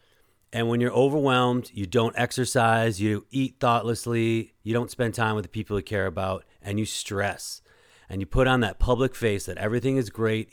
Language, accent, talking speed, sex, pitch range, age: English, American, 195 wpm, male, 100-125 Hz, 40-59